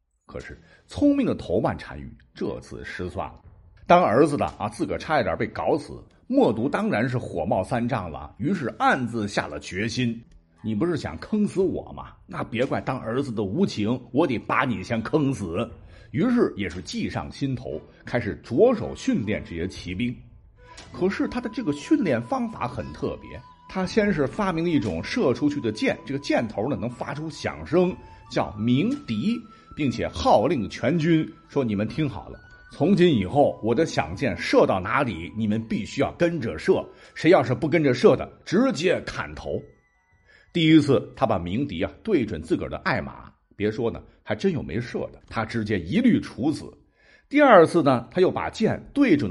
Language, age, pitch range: Chinese, 50-69, 105-170 Hz